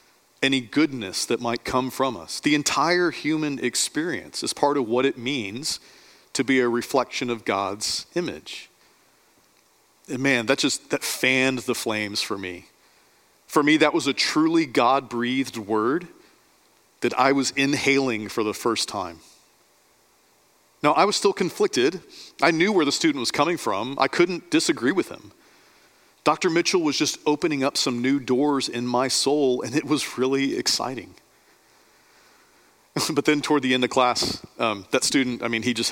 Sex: male